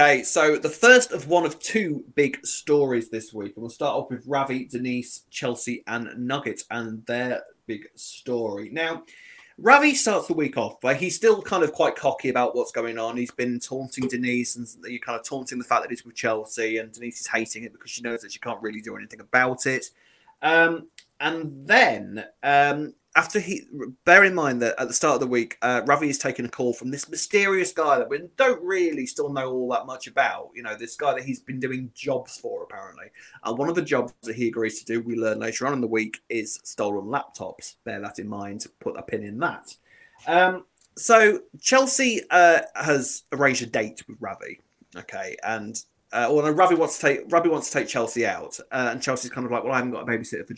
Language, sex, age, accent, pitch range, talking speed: English, male, 20-39, British, 120-170 Hz, 225 wpm